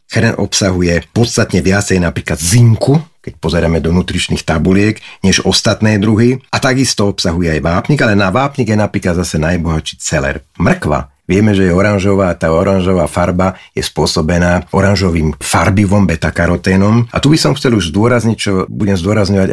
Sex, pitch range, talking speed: male, 85-105 Hz, 155 wpm